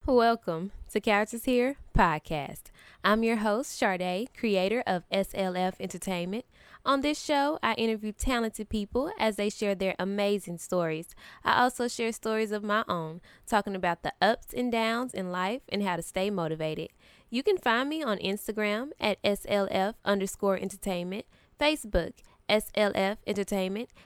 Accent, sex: American, female